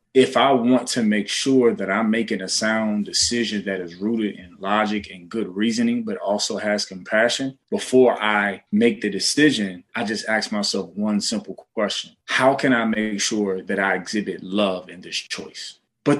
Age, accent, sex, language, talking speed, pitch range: 20-39, American, male, English, 180 wpm, 105-130 Hz